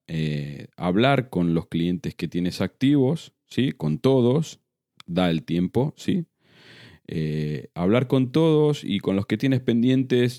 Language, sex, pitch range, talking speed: Spanish, male, 80-115 Hz, 145 wpm